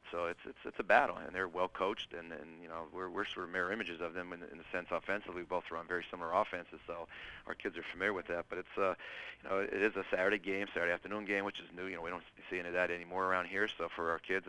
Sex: male